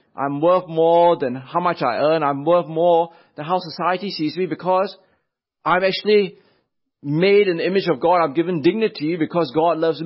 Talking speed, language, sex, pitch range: 180 wpm, English, male, 155-200 Hz